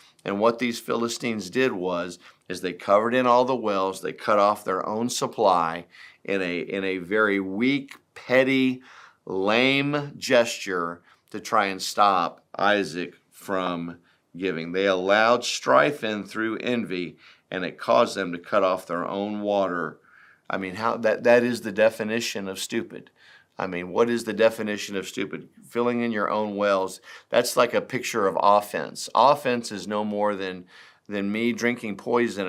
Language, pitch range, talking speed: English, 95-120 Hz, 165 wpm